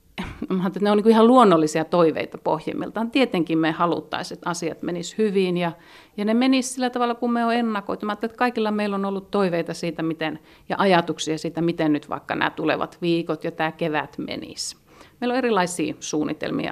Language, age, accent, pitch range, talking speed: Finnish, 50-69, native, 160-205 Hz, 170 wpm